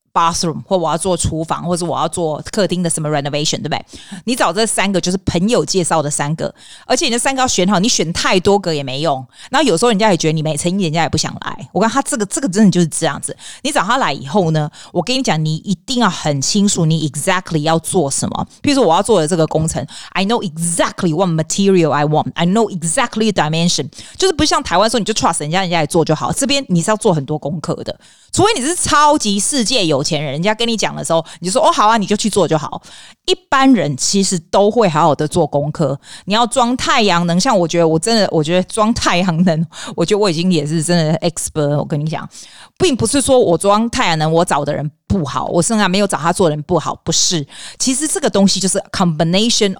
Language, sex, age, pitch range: Chinese, female, 30-49, 160-215 Hz